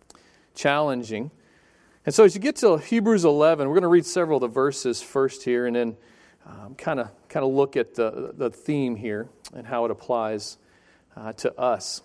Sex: male